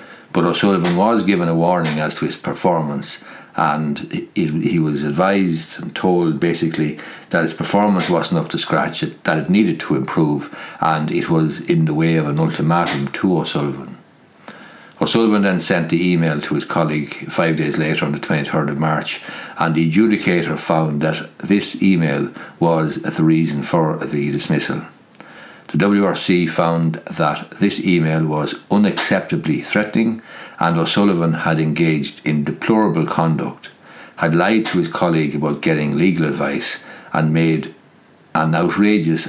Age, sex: 60-79, male